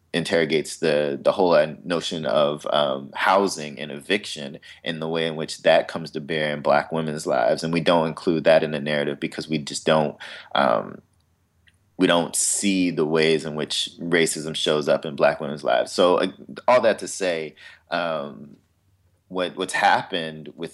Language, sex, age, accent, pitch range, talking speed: English, male, 30-49, American, 75-85 Hz, 175 wpm